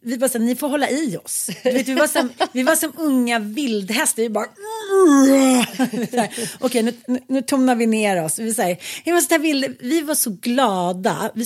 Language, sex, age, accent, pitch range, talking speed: Swedish, female, 30-49, native, 205-260 Hz, 220 wpm